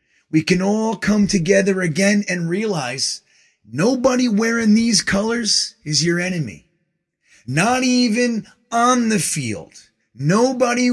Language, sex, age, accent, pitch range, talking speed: English, male, 30-49, American, 125-200 Hz, 115 wpm